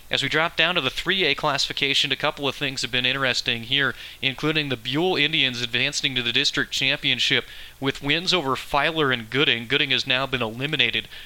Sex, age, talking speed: male, 30-49, 190 wpm